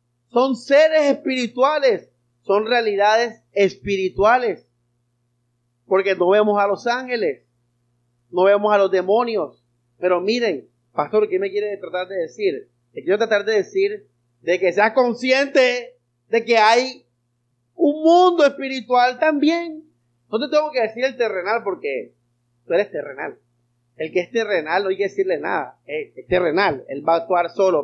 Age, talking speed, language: 30-49, 150 wpm, Spanish